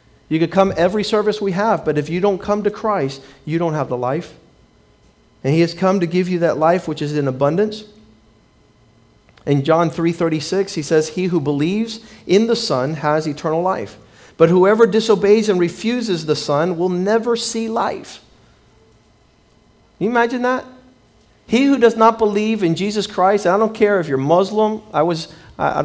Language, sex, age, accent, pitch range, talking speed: English, male, 40-59, American, 155-205 Hz, 180 wpm